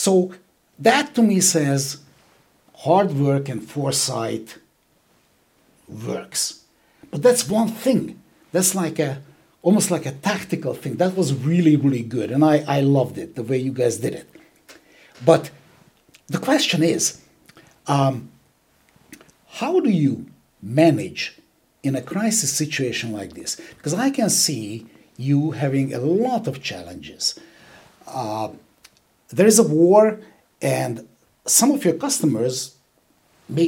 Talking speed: 130 wpm